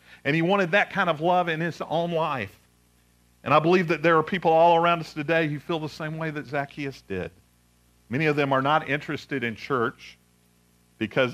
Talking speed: 205 wpm